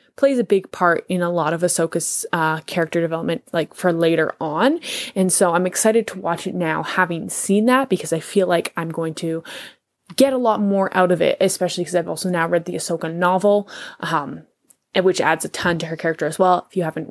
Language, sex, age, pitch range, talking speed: English, female, 20-39, 170-200 Hz, 225 wpm